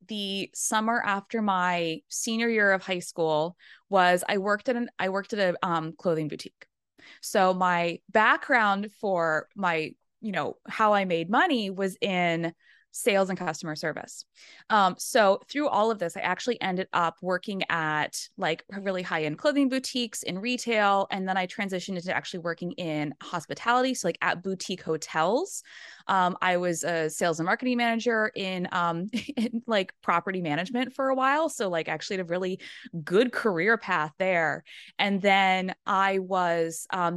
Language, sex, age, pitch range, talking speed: English, female, 20-39, 170-220 Hz, 170 wpm